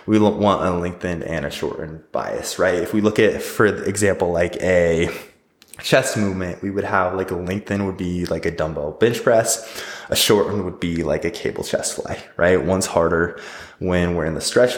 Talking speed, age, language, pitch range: 200 wpm, 20-39, English, 85-105 Hz